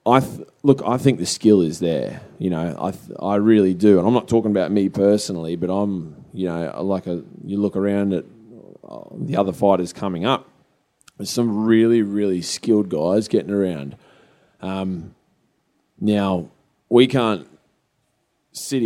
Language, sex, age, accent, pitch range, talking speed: English, male, 20-39, Australian, 95-115 Hz, 160 wpm